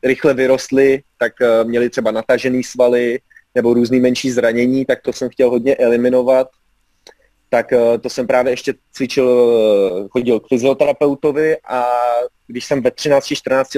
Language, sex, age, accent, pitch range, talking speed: Czech, male, 30-49, native, 120-130 Hz, 140 wpm